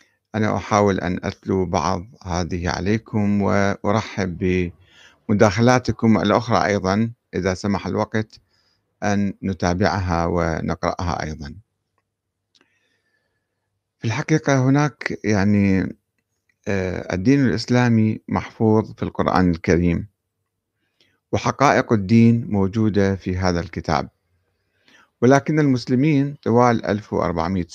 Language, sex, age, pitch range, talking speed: Arabic, male, 50-69, 90-115 Hz, 80 wpm